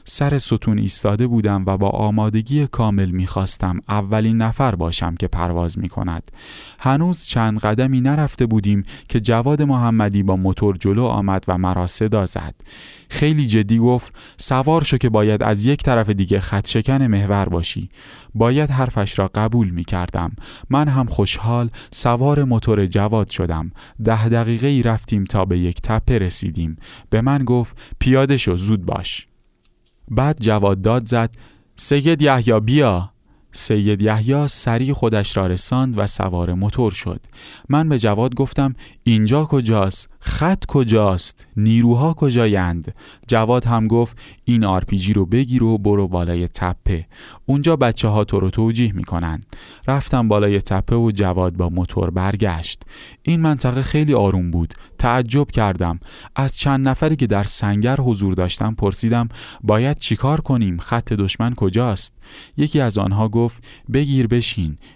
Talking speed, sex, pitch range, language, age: 140 wpm, male, 95-125 Hz, Persian, 30-49